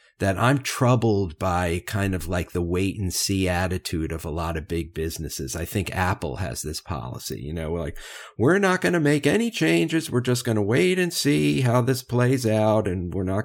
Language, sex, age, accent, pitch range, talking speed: English, male, 50-69, American, 90-115 Hz, 220 wpm